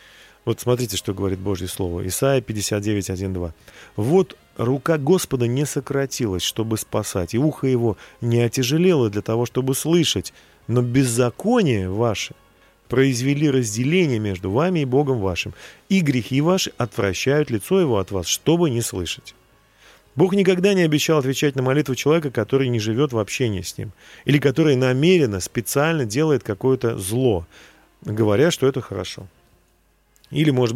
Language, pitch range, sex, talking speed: Russian, 105-145 Hz, male, 145 wpm